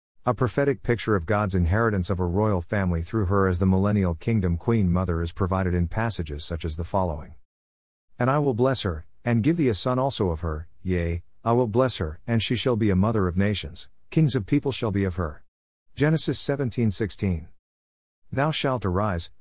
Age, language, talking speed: 50-69, English, 200 wpm